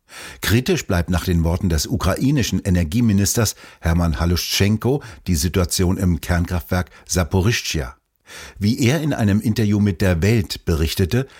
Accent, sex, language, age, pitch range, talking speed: German, male, German, 60-79, 85-105 Hz, 125 wpm